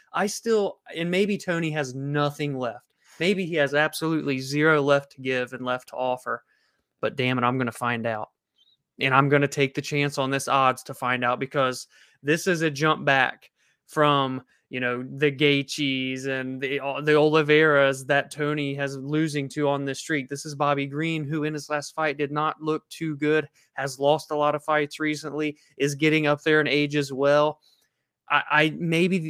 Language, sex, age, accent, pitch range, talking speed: English, male, 20-39, American, 135-155 Hz, 195 wpm